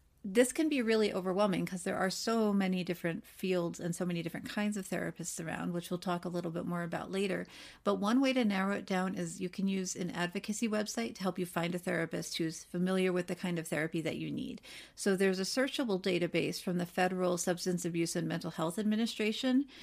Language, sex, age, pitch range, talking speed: English, female, 40-59, 175-205 Hz, 220 wpm